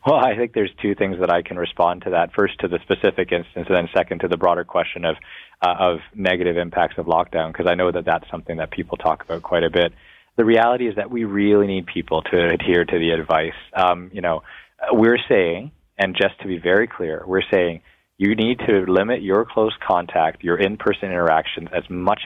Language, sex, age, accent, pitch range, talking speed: English, male, 20-39, American, 85-100 Hz, 220 wpm